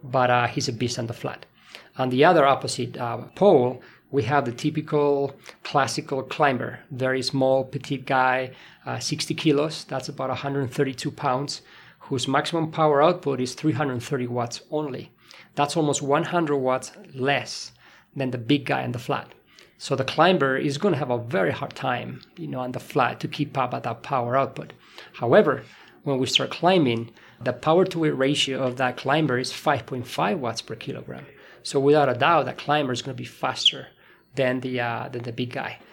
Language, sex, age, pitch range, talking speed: English, male, 40-59, 125-150 Hz, 180 wpm